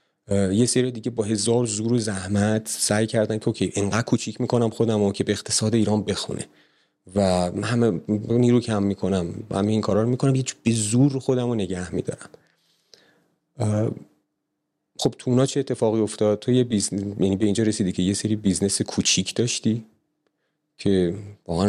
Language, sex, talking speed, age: English, male, 150 wpm, 30-49